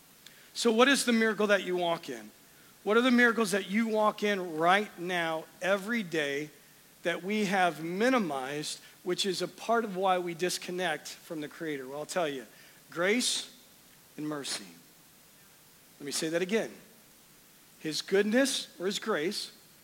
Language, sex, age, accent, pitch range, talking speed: English, male, 40-59, American, 185-255 Hz, 160 wpm